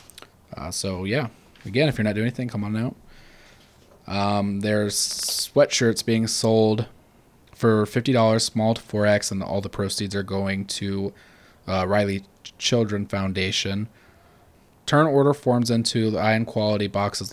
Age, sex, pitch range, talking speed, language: 20-39, male, 100-120 Hz, 140 wpm, English